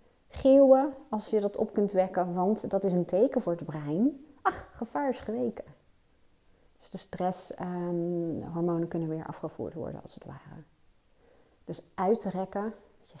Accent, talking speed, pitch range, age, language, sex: Dutch, 155 wpm, 165-205 Hz, 40-59, Dutch, female